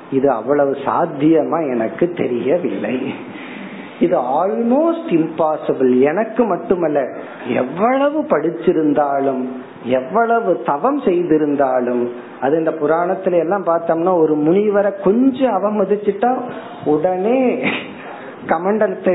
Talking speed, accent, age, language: 50 wpm, native, 50-69, Tamil